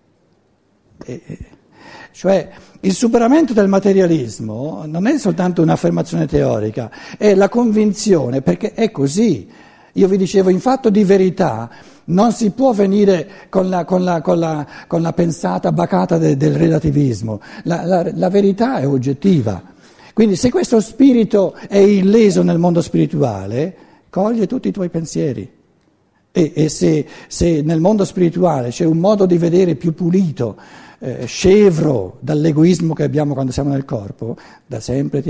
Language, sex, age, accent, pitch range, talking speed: Italian, male, 60-79, native, 145-200 Hz, 135 wpm